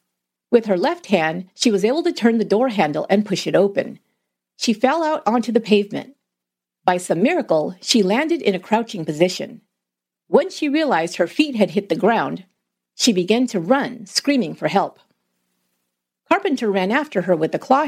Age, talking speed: 50-69, 180 wpm